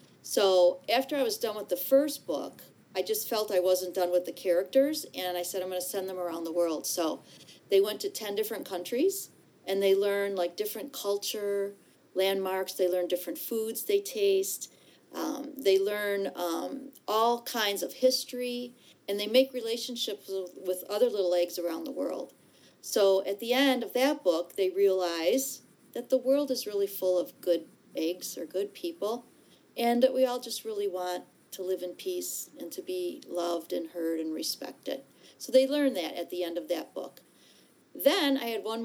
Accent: American